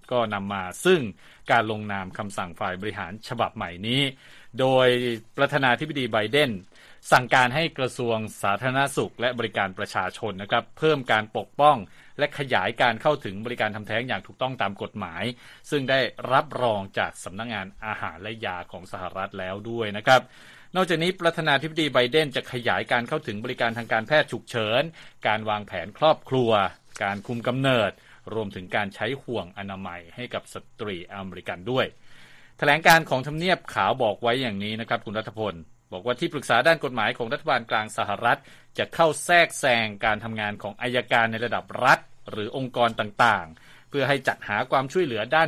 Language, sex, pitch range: Thai, male, 105-140 Hz